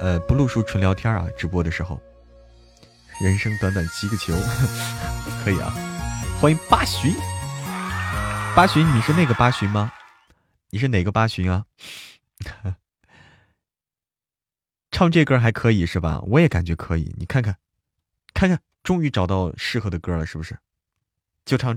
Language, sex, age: Chinese, male, 20-39